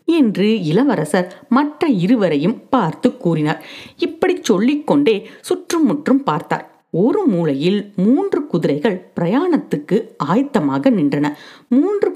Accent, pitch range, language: native, 165-265 Hz, Tamil